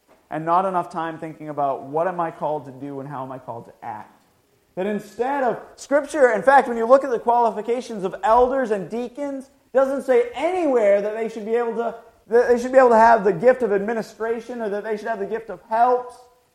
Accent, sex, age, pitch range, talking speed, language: American, male, 40-59, 175-245 Hz, 225 wpm, English